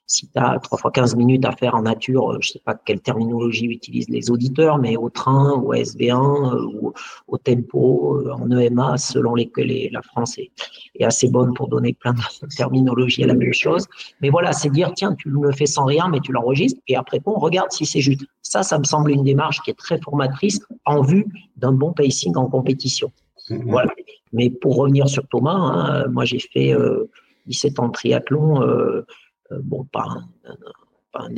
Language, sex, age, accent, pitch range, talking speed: French, male, 50-69, French, 120-145 Hz, 205 wpm